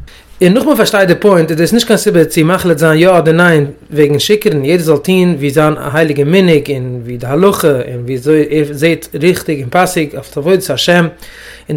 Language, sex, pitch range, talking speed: English, male, 155-205 Hz, 210 wpm